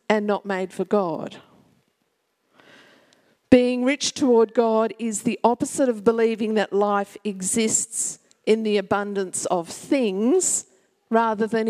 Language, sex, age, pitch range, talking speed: English, female, 50-69, 205-245 Hz, 125 wpm